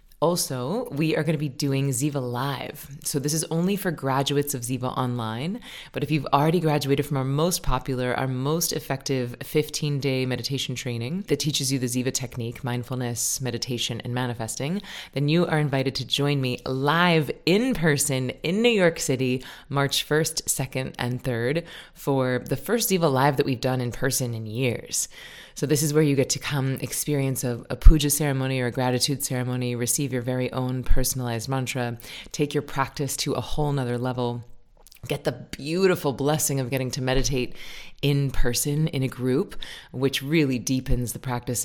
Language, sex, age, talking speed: English, female, 20-39, 175 wpm